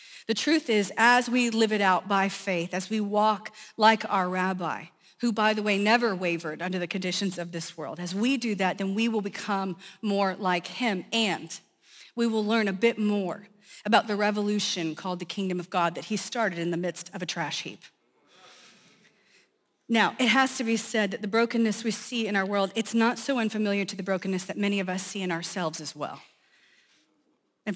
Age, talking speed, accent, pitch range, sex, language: 40-59, 205 wpm, American, 185-225 Hz, female, English